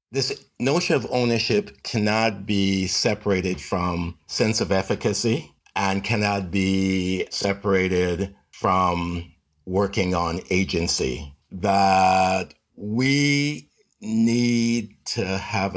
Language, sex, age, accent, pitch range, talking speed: English, male, 60-79, American, 95-125 Hz, 90 wpm